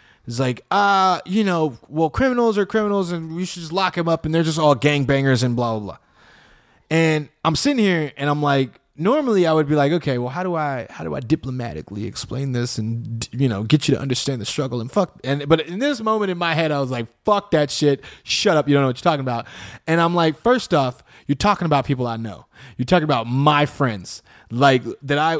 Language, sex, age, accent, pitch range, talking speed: English, male, 20-39, American, 125-170 Hz, 240 wpm